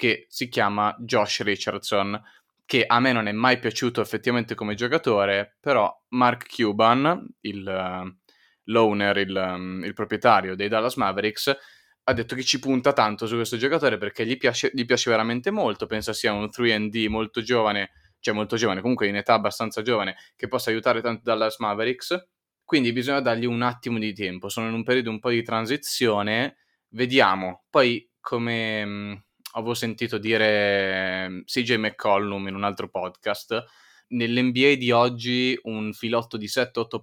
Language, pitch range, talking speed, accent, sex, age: Italian, 105-125 Hz, 160 wpm, native, male, 20-39